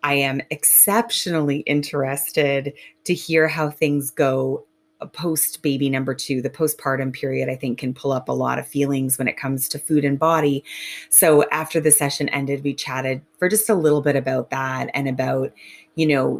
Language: English